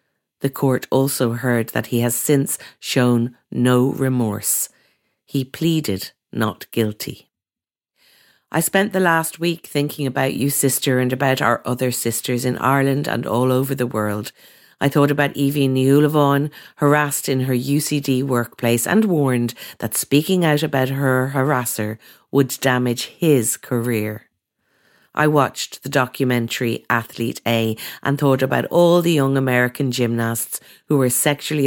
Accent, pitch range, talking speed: Irish, 120-145 Hz, 140 wpm